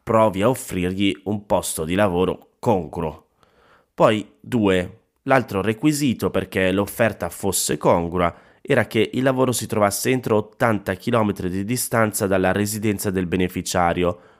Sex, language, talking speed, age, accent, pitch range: male, Italian, 130 wpm, 30-49, native, 90-125 Hz